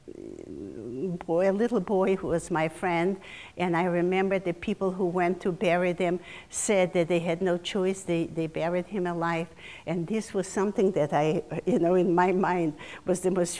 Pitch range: 170-205 Hz